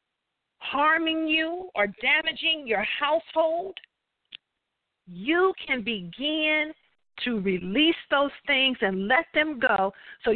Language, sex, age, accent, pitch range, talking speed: English, female, 50-69, American, 240-335 Hz, 105 wpm